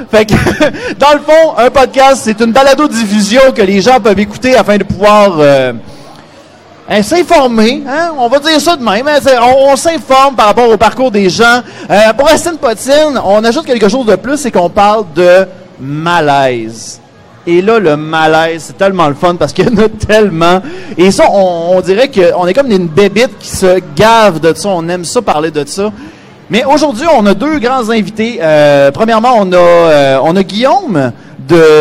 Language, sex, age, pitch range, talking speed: French, male, 30-49, 165-235 Hz, 200 wpm